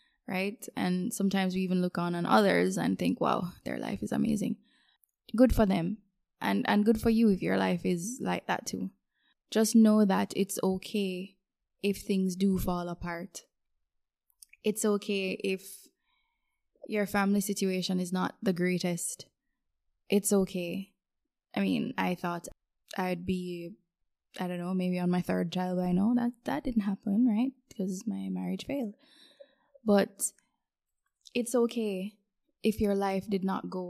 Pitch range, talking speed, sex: 185-220 Hz, 155 wpm, female